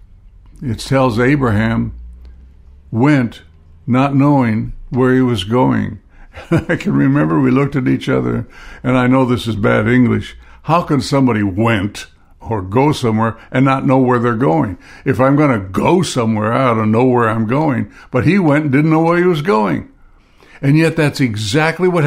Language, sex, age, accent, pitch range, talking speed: English, male, 60-79, American, 110-140 Hz, 180 wpm